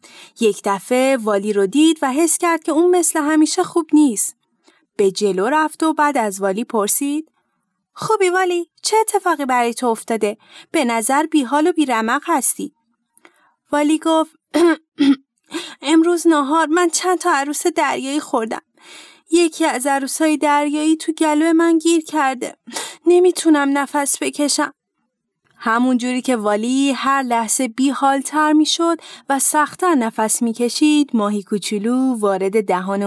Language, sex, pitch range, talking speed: Persian, female, 235-325 Hz, 140 wpm